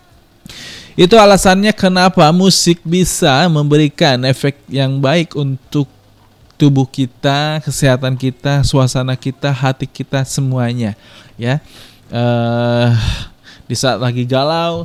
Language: Indonesian